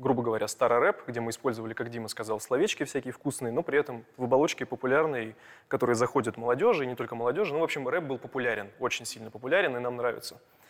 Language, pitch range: Russian, 115-135 Hz